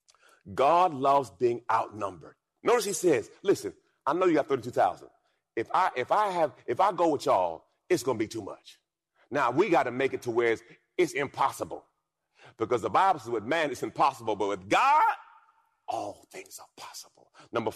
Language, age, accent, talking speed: English, 40-59, American, 185 wpm